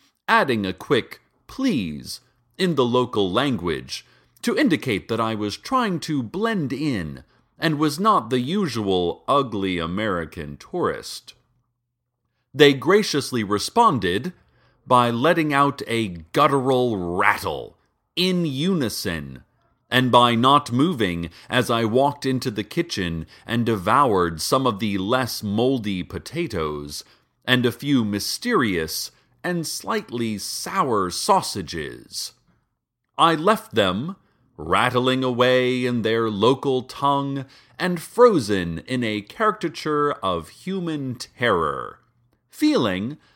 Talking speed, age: 110 wpm, 40-59